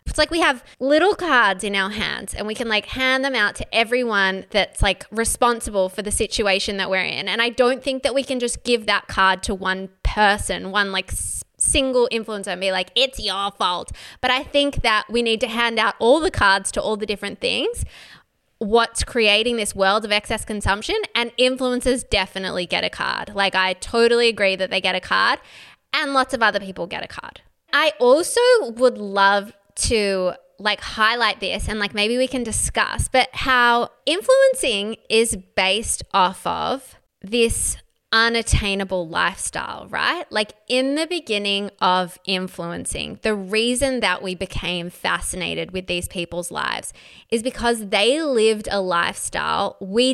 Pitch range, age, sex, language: 195-250 Hz, 20-39, female, English